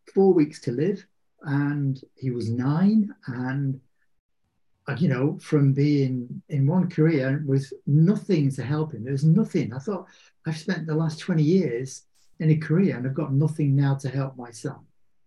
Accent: British